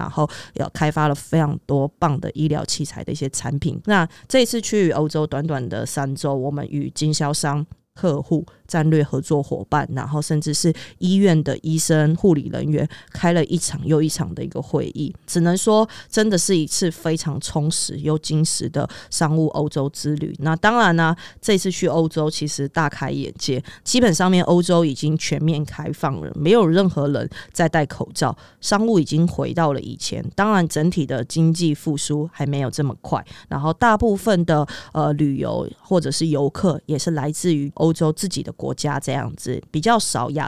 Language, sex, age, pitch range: Chinese, female, 20-39, 145-170 Hz